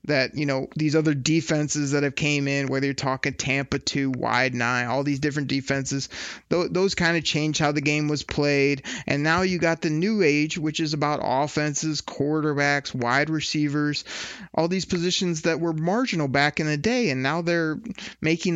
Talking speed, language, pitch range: 190 wpm, English, 140-170 Hz